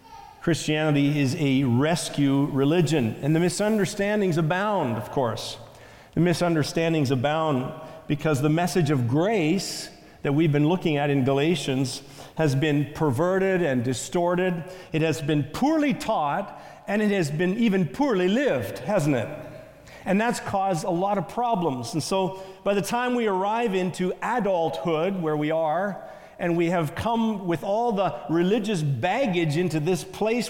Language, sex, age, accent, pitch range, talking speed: English, male, 50-69, American, 155-220 Hz, 150 wpm